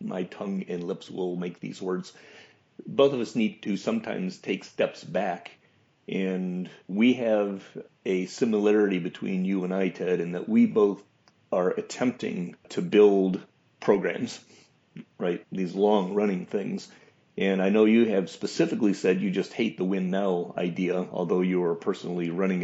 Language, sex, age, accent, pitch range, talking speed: English, male, 40-59, American, 90-105 Hz, 160 wpm